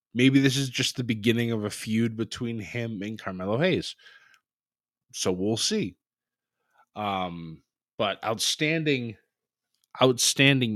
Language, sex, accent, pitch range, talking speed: English, male, American, 100-135 Hz, 115 wpm